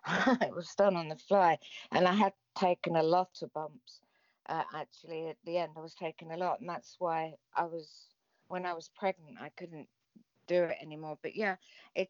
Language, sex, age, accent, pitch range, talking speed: English, female, 50-69, British, 160-190 Hz, 205 wpm